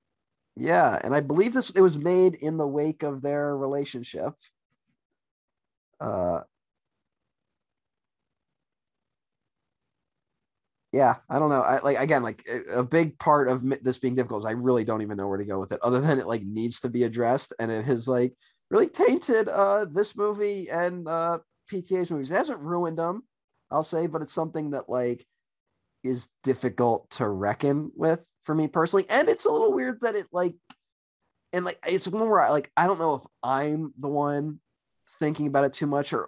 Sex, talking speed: male, 180 wpm